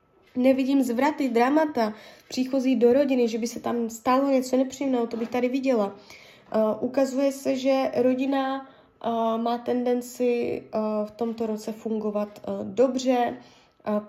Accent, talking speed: native, 140 wpm